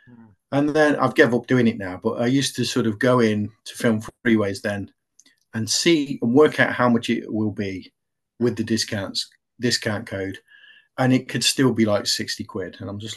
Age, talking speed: 30-49, 210 wpm